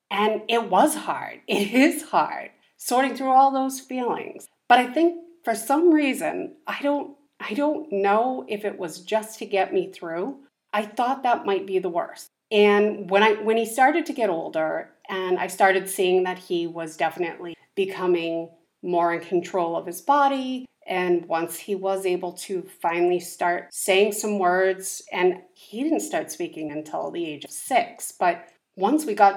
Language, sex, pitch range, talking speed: English, female, 170-225 Hz, 180 wpm